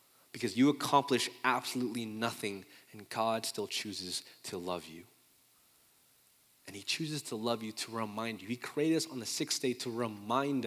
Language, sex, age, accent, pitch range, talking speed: English, male, 20-39, American, 115-150 Hz, 170 wpm